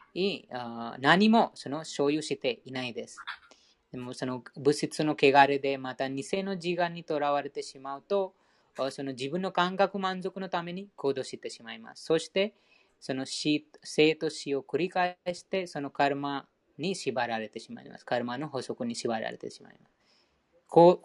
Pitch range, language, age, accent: 140-190 Hz, Japanese, 20-39, Indian